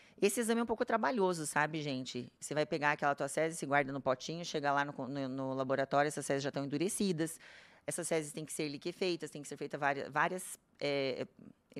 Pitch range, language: 145-195 Hz, Portuguese